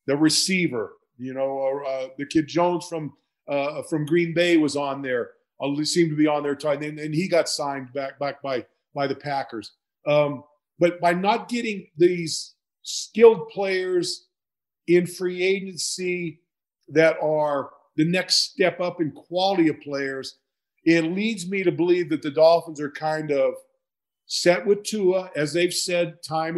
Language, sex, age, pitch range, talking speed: English, male, 50-69, 145-175 Hz, 160 wpm